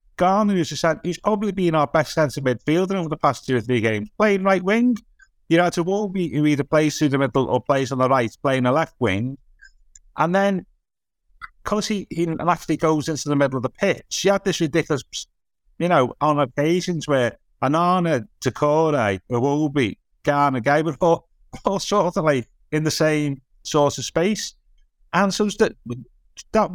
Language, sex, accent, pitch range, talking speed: English, male, British, 130-175 Hz, 190 wpm